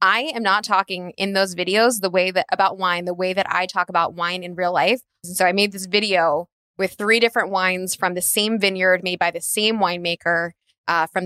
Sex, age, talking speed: female, 20-39, 225 wpm